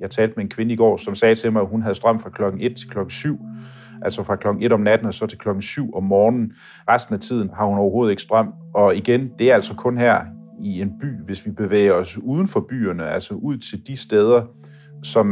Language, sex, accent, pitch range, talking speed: Danish, male, native, 100-120 Hz, 255 wpm